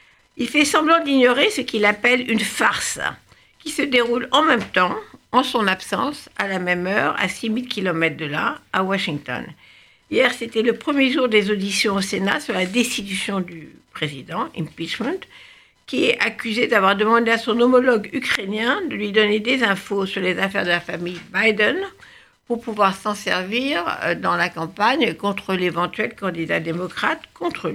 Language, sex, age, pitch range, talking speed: French, female, 60-79, 195-250 Hz, 170 wpm